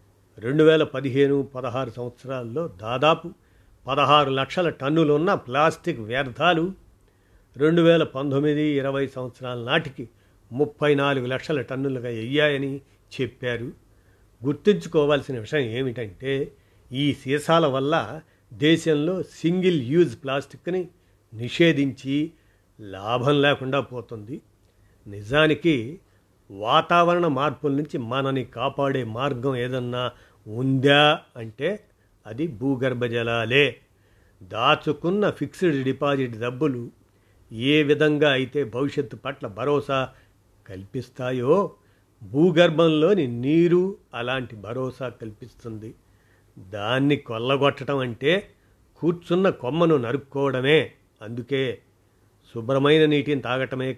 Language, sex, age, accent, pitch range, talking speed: Telugu, male, 50-69, native, 115-150 Hz, 85 wpm